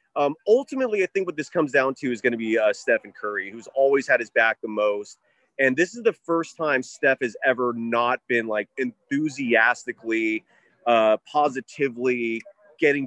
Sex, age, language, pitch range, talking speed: male, 30-49, English, 125-185 Hz, 180 wpm